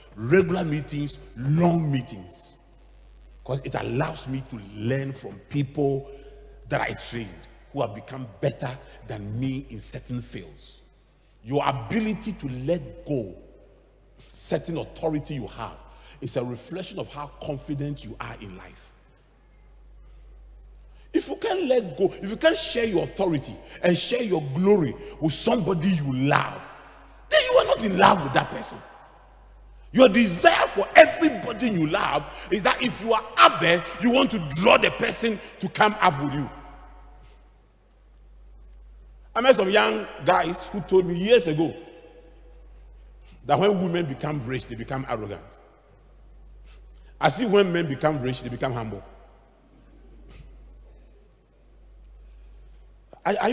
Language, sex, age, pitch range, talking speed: English, male, 40-59, 110-185 Hz, 140 wpm